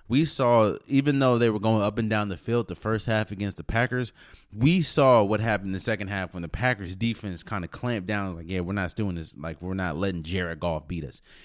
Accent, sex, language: American, male, English